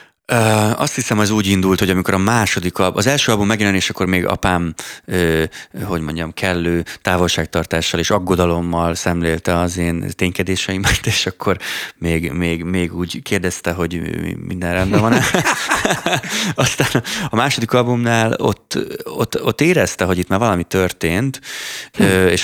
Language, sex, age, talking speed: Hungarian, male, 30-49, 135 wpm